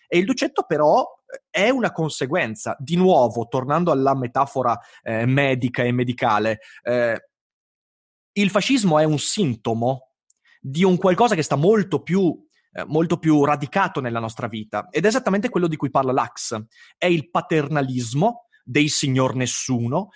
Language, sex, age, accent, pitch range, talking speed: Italian, male, 30-49, native, 130-205 Hz, 145 wpm